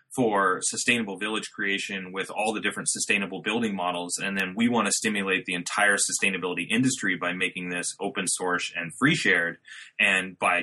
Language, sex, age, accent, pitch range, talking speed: English, male, 30-49, American, 105-140 Hz, 175 wpm